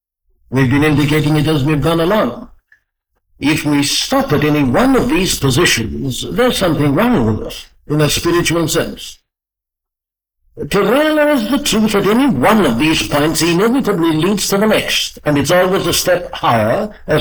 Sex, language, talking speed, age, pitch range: male, English, 165 wpm, 60-79, 130-190 Hz